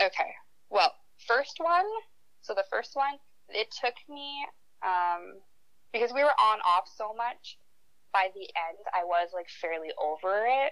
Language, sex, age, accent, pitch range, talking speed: English, female, 20-39, American, 160-200 Hz, 155 wpm